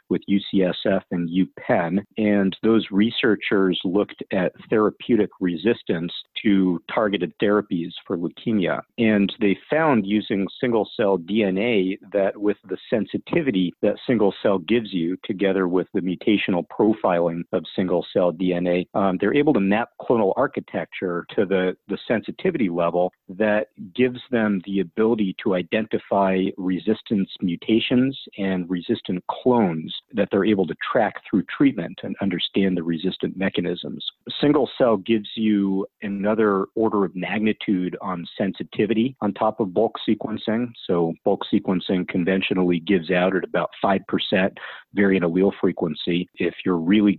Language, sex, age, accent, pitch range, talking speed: English, male, 50-69, American, 90-110 Hz, 135 wpm